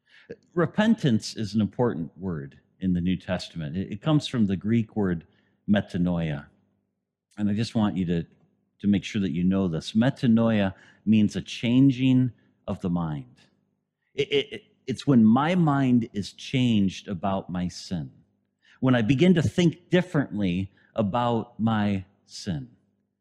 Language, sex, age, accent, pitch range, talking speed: English, male, 50-69, American, 100-140 Hz, 140 wpm